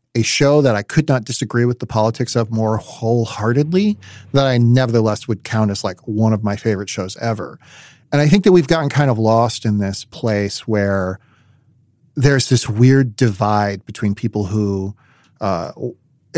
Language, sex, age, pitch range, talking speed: English, male, 40-59, 105-135 Hz, 170 wpm